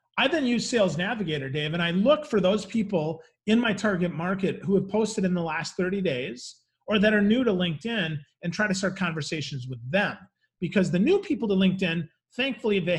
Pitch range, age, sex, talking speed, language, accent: 155-200 Hz, 40-59, male, 210 wpm, English, American